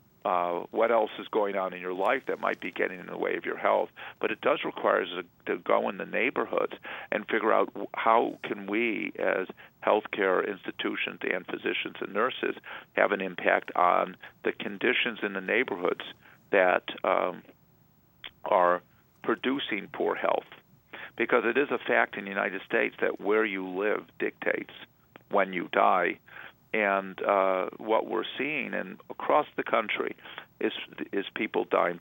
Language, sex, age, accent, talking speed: English, male, 50-69, American, 160 wpm